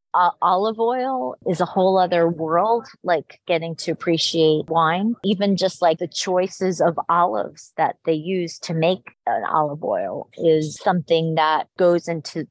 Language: English